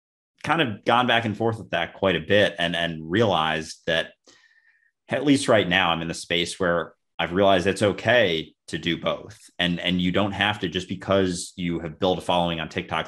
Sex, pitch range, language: male, 85-100 Hz, English